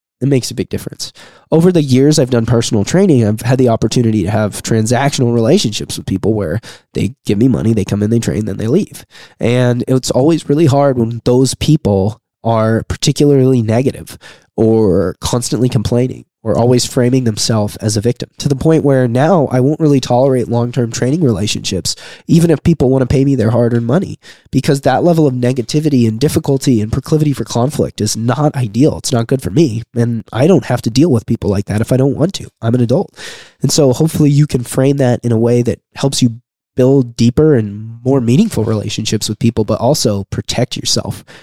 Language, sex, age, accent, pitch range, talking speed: English, male, 20-39, American, 115-145 Hz, 205 wpm